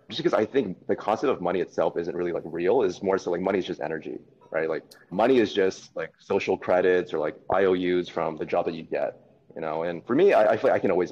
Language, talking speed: English, 270 wpm